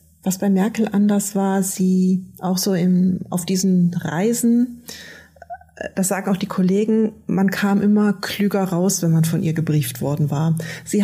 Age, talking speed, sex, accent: 30-49, 165 wpm, female, German